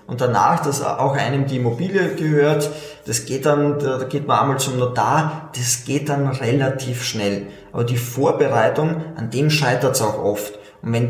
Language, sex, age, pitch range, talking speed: German, male, 20-39, 125-155 Hz, 180 wpm